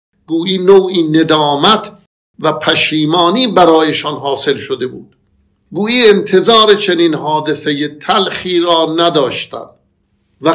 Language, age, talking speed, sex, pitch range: Persian, 50-69, 100 wpm, male, 150-190 Hz